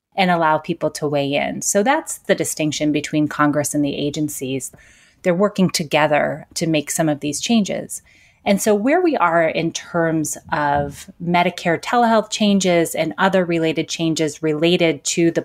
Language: English